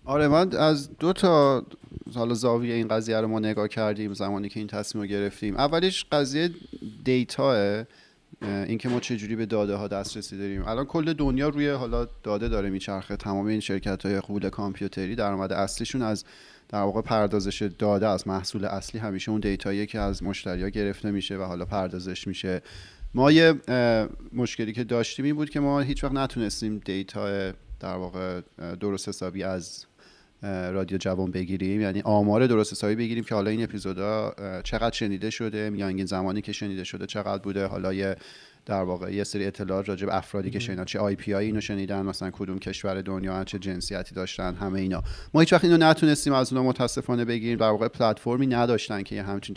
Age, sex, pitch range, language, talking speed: 30-49, male, 95-115 Hz, Persian, 180 wpm